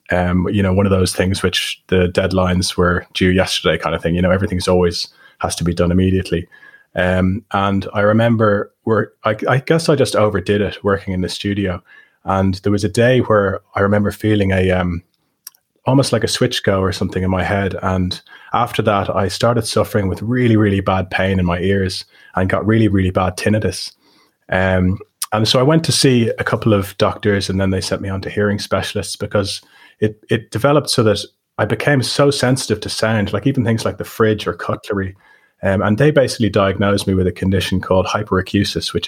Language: English